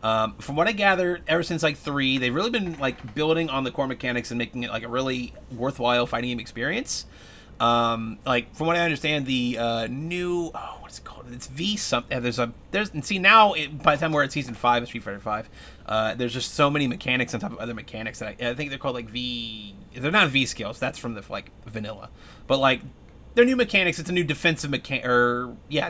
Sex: male